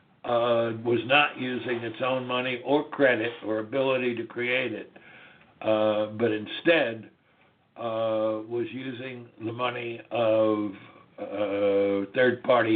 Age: 60-79